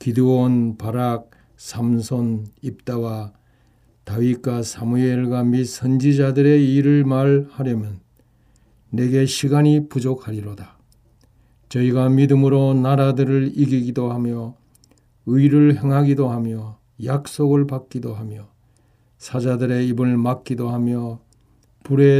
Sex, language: male, Korean